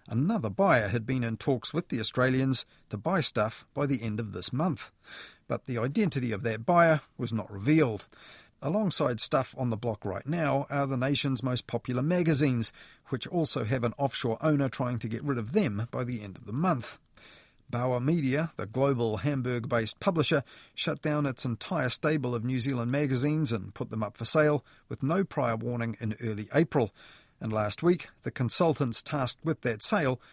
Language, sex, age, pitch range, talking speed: English, male, 40-59, 115-145 Hz, 190 wpm